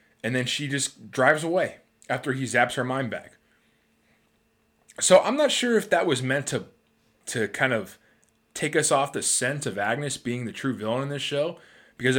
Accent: American